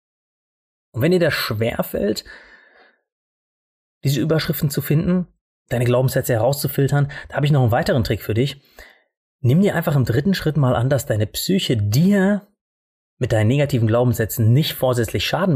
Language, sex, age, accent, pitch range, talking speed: German, male, 30-49, German, 115-165 Hz, 155 wpm